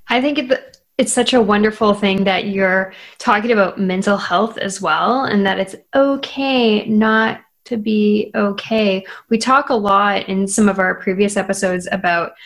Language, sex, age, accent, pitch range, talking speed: English, female, 10-29, American, 190-230 Hz, 165 wpm